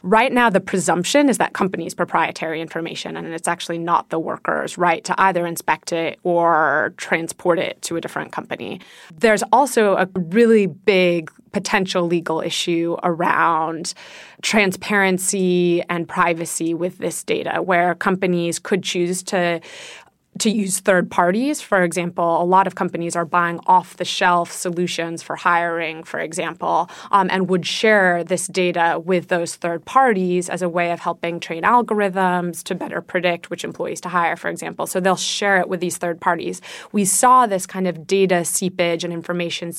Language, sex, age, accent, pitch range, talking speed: English, female, 20-39, American, 170-190 Hz, 165 wpm